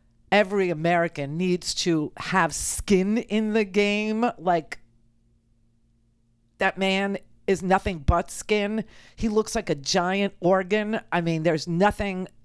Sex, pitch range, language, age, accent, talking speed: female, 160-220 Hz, English, 50-69, American, 125 wpm